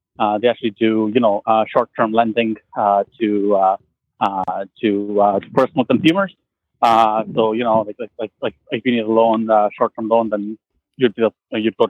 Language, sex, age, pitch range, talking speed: English, male, 30-49, 110-140 Hz, 200 wpm